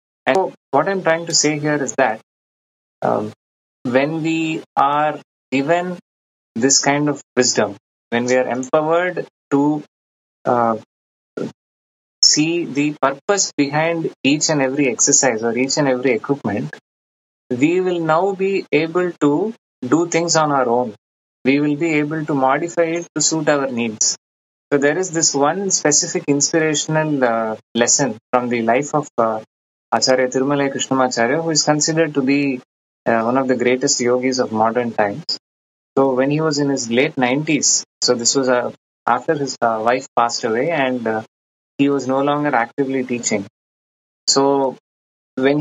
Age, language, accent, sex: 20-39, English, Indian, male